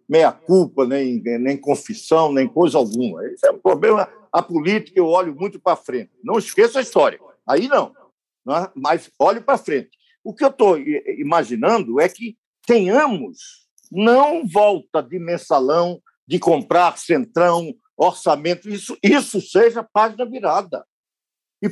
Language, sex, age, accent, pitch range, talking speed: Portuguese, male, 60-79, Brazilian, 170-275 Hz, 140 wpm